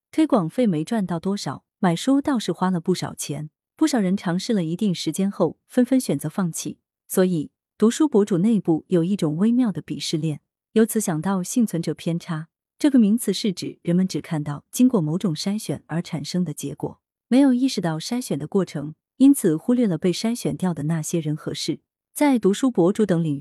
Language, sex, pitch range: Chinese, female, 160-230 Hz